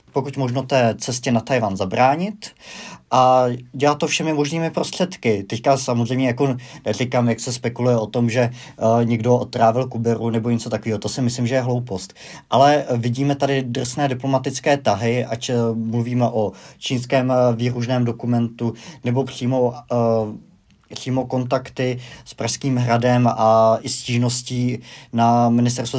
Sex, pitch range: male, 115-130 Hz